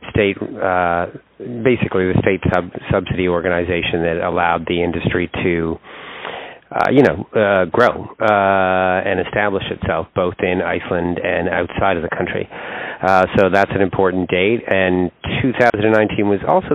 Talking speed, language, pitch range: 145 wpm, English, 95-115 Hz